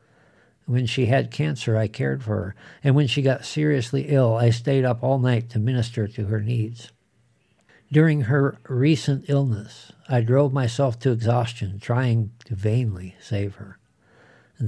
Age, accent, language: 60-79, American, English